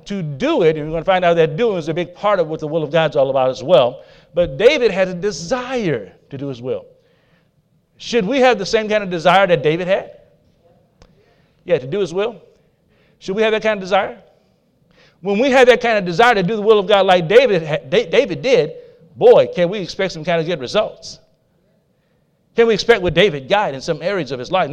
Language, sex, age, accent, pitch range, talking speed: English, male, 50-69, American, 165-245 Hz, 235 wpm